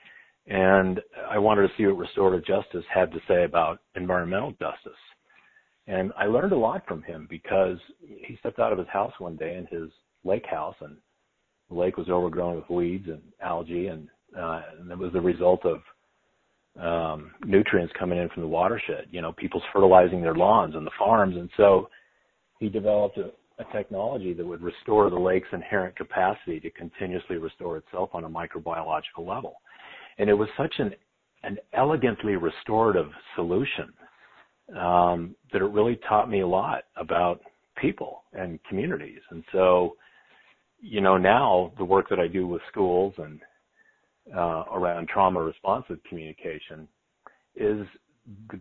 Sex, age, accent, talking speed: male, 40-59, American, 160 wpm